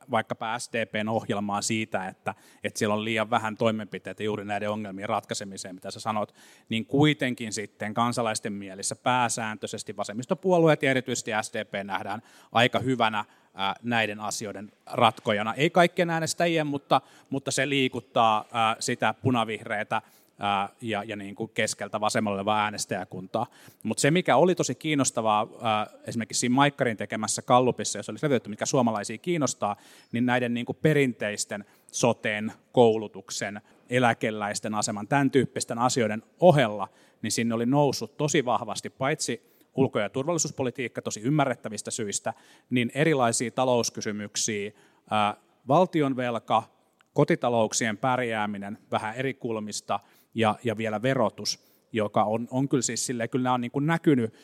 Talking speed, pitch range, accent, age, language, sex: 130 wpm, 105-130 Hz, native, 30-49, Finnish, male